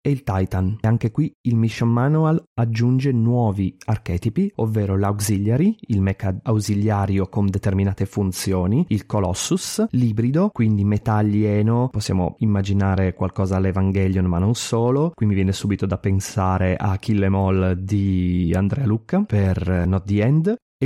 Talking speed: 145 wpm